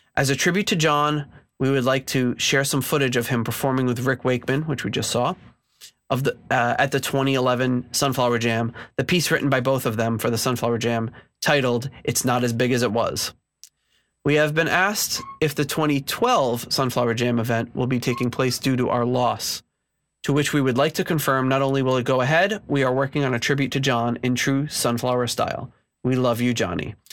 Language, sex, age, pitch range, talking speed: English, male, 30-49, 120-140 Hz, 210 wpm